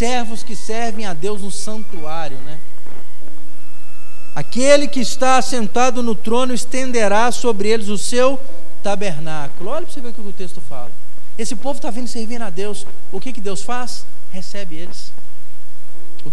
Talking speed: 160 wpm